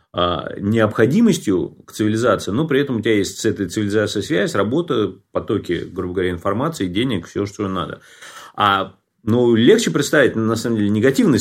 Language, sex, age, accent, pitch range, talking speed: Russian, male, 30-49, native, 100-125 Hz, 165 wpm